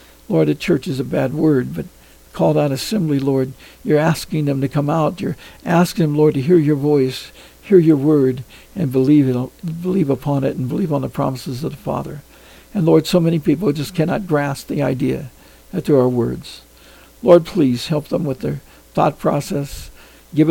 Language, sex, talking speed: English, male, 185 wpm